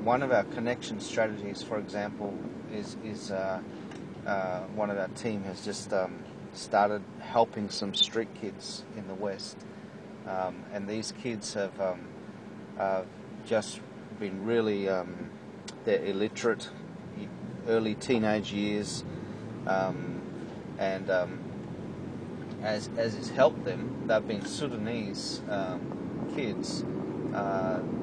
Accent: Australian